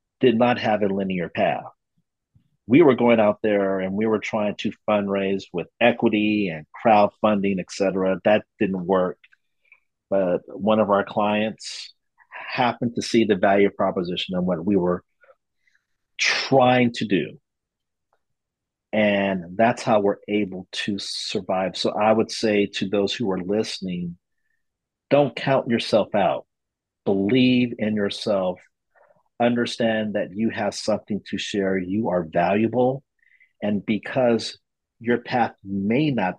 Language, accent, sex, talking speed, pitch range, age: English, American, male, 135 wpm, 95-115 Hz, 40-59